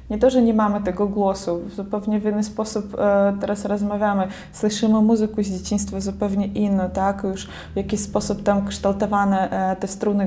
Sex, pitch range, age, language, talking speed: female, 195-220 Hz, 20-39, Polish, 180 wpm